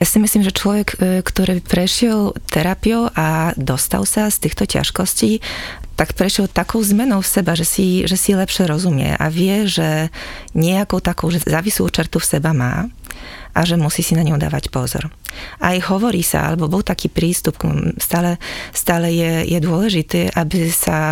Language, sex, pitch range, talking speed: Slovak, female, 155-185 Hz, 165 wpm